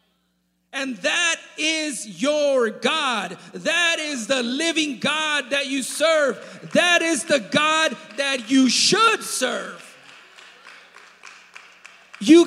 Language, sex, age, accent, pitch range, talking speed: English, male, 40-59, American, 215-290 Hz, 105 wpm